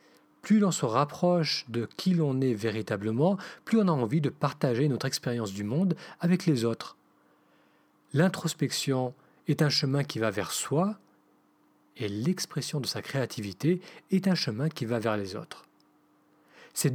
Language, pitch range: French, 130-175 Hz